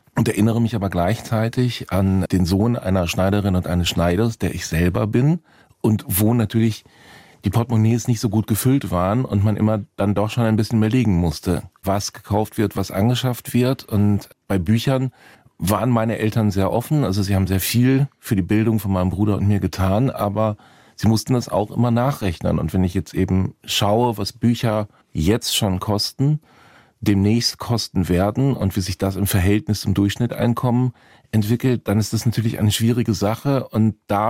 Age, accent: 40-59, German